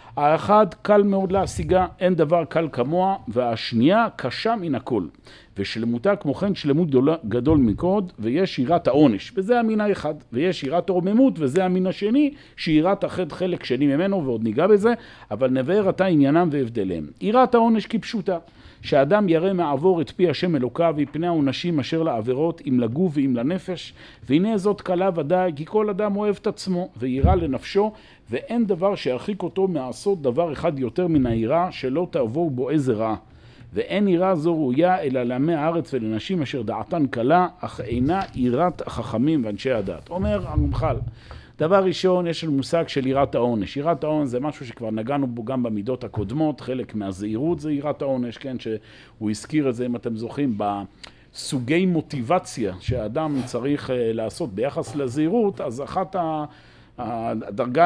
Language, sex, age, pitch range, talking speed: Hebrew, male, 50-69, 125-185 Hz, 155 wpm